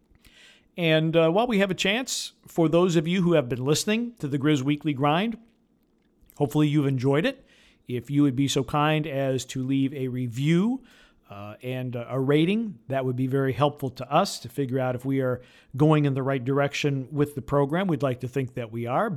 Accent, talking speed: American, 215 wpm